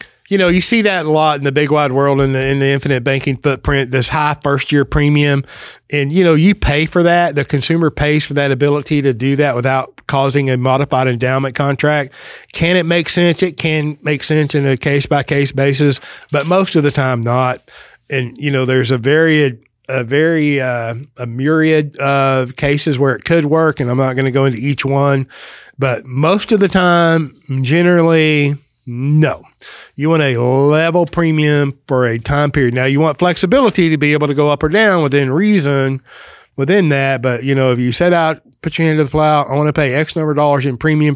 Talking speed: 210 wpm